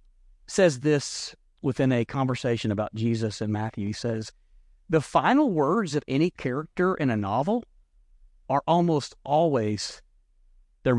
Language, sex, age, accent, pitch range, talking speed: English, male, 40-59, American, 130-215 Hz, 130 wpm